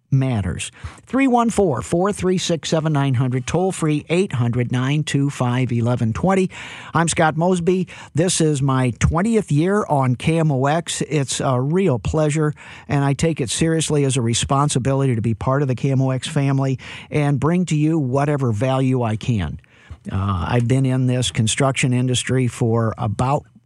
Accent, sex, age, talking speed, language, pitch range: American, male, 50-69, 130 wpm, English, 120-150 Hz